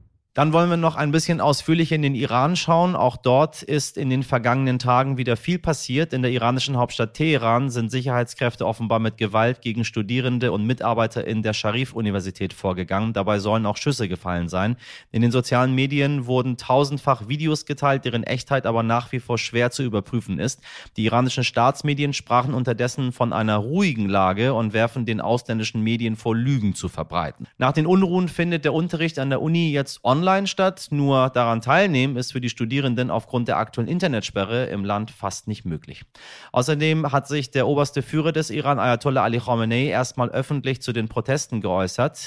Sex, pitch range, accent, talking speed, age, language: male, 110-140 Hz, German, 180 wpm, 30-49, German